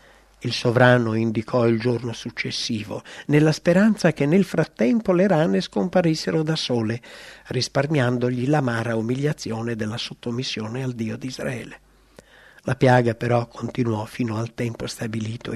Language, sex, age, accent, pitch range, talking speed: English, male, 60-79, Italian, 120-165 Hz, 125 wpm